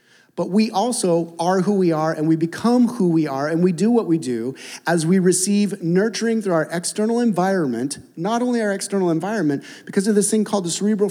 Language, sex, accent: English, male, American